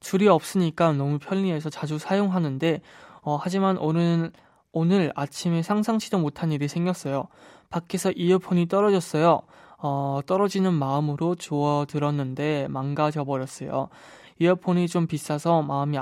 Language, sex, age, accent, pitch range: Korean, male, 20-39, native, 145-180 Hz